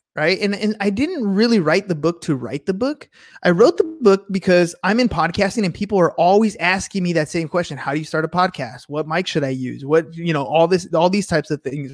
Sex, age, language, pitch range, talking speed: male, 20-39, English, 160-210 Hz, 255 wpm